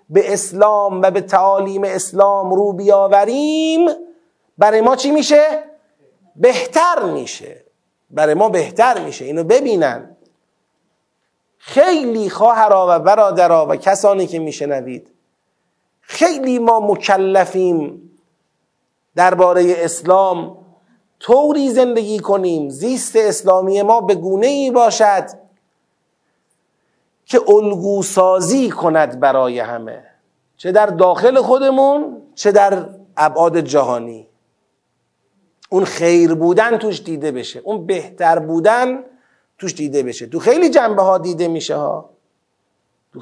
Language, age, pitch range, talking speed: Persian, 40-59, 170-240 Hz, 105 wpm